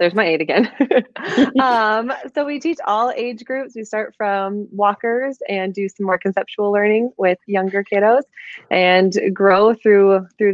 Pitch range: 175-220 Hz